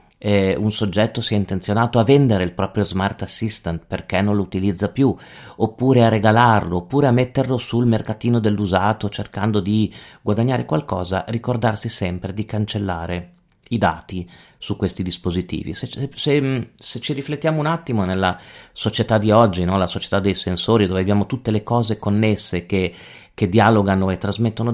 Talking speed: 165 wpm